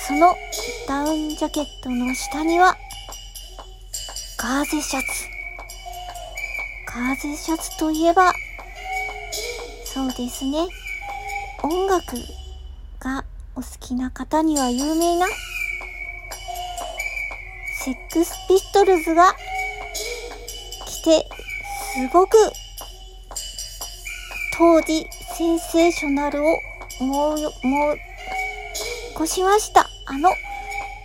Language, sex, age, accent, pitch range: Japanese, male, 50-69, native, 290-375 Hz